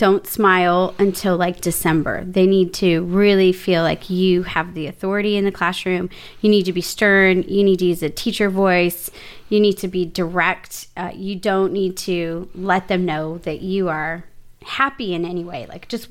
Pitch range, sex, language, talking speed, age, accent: 185-235 Hz, female, English, 195 wpm, 30-49, American